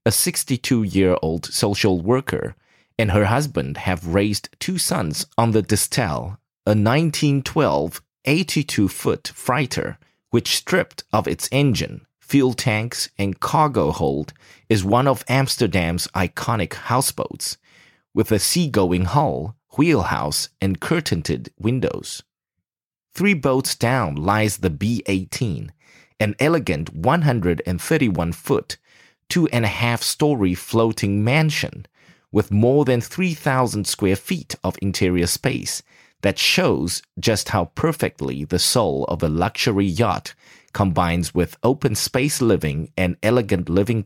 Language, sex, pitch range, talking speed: English, male, 95-135 Hz, 110 wpm